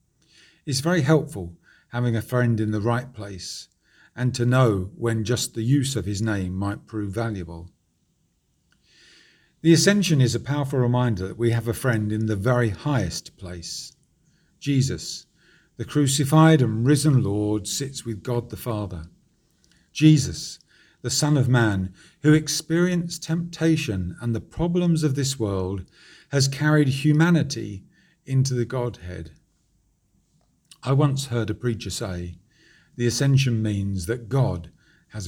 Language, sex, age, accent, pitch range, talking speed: English, male, 50-69, British, 105-145 Hz, 140 wpm